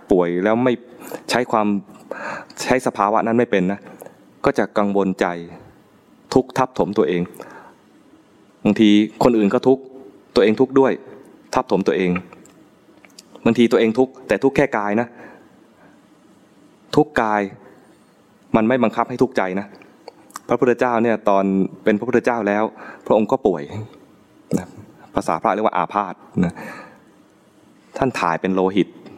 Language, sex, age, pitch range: English, male, 20-39, 95-120 Hz